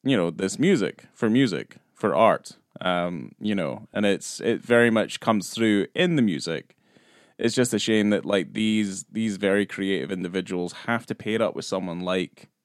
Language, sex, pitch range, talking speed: English, male, 90-110 Hz, 190 wpm